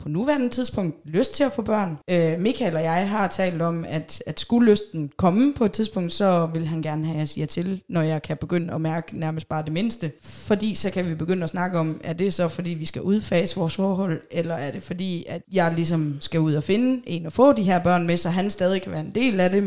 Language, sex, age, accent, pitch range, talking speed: Danish, female, 20-39, native, 165-195 Hz, 260 wpm